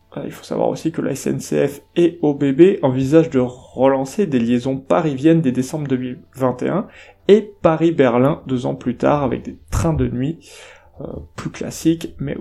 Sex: male